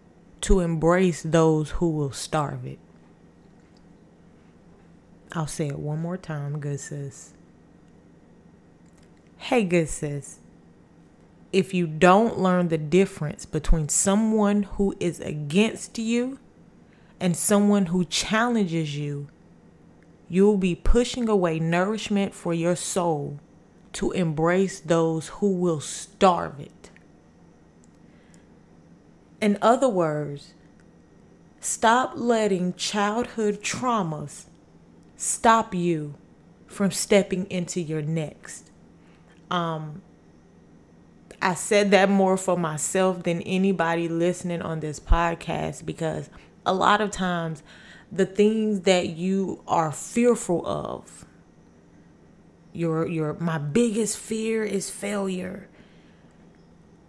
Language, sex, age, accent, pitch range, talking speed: English, female, 20-39, American, 160-195 Hz, 100 wpm